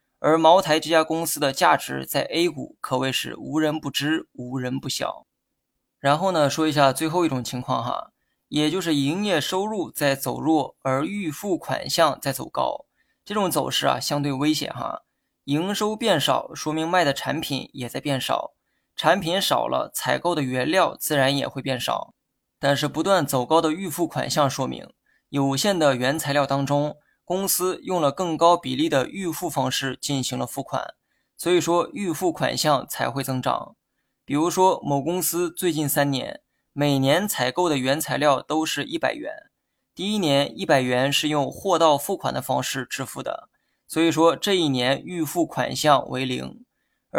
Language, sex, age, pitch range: Chinese, male, 20-39, 135-175 Hz